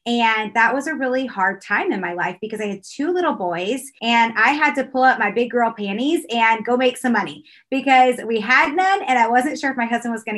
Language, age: English, 20-39